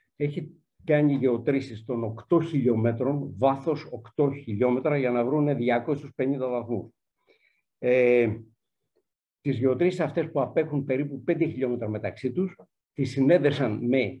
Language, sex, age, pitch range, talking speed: Greek, male, 60-79, 120-155 Hz, 120 wpm